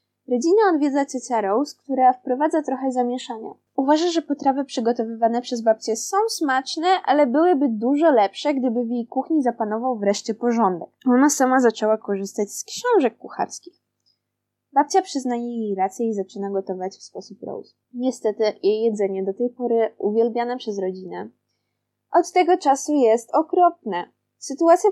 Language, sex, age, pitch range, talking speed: Polish, female, 20-39, 205-280 Hz, 140 wpm